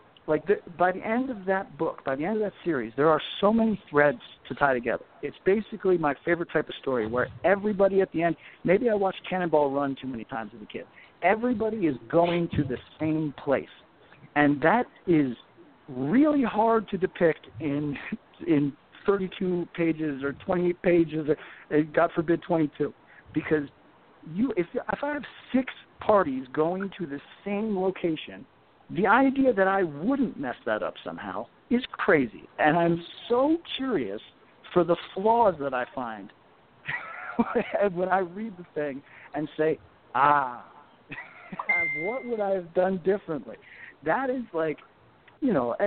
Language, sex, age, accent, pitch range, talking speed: English, male, 50-69, American, 145-205 Hz, 160 wpm